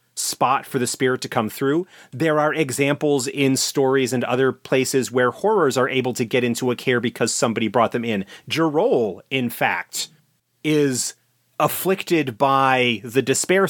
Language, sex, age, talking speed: English, male, 30-49, 160 wpm